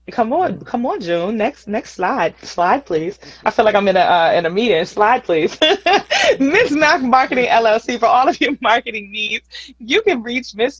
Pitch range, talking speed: 175-235 Hz, 200 wpm